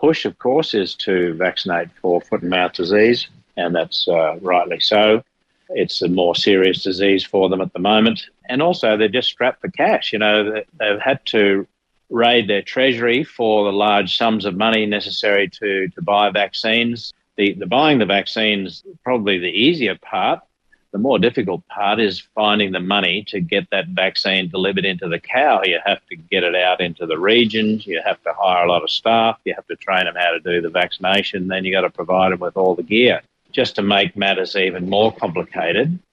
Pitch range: 90-110 Hz